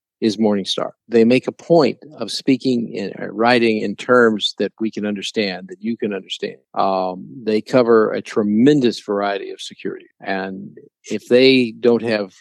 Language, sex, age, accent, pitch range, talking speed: English, male, 50-69, American, 100-115 Hz, 160 wpm